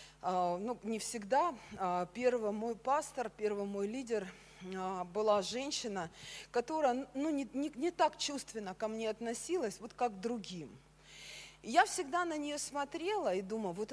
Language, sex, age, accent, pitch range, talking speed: Russian, female, 40-59, native, 200-265 Hz, 140 wpm